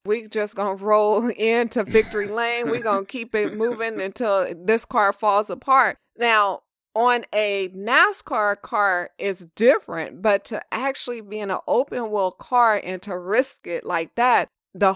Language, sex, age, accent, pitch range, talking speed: English, female, 20-39, American, 200-250 Hz, 165 wpm